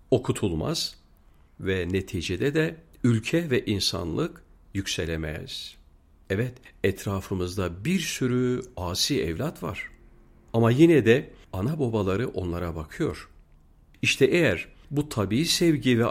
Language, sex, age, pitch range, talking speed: Turkish, male, 50-69, 80-120 Hz, 105 wpm